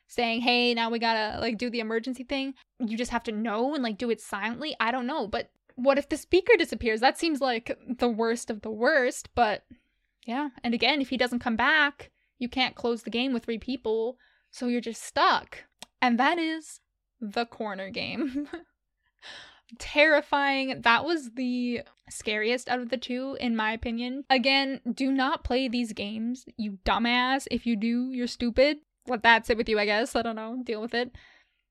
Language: English